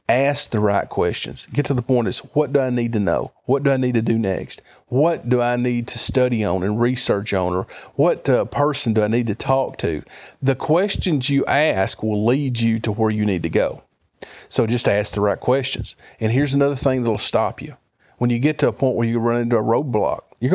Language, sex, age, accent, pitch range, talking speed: English, male, 40-59, American, 115-140 Hz, 240 wpm